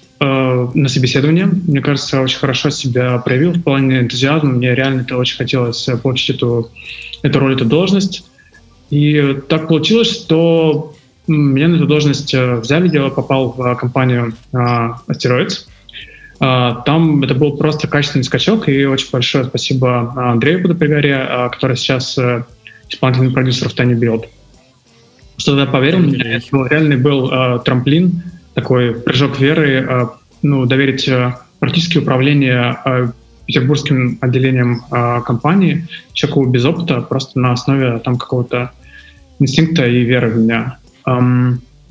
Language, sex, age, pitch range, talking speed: Russian, male, 20-39, 125-150 Hz, 130 wpm